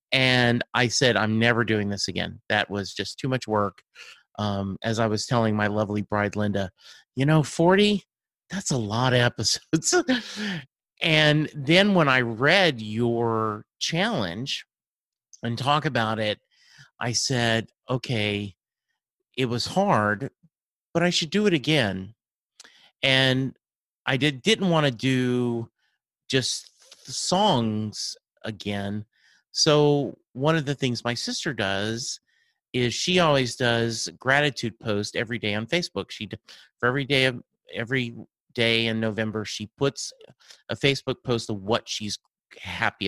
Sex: male